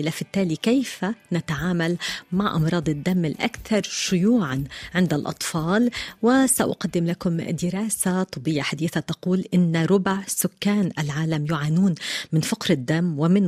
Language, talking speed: Arabic, 115 wpm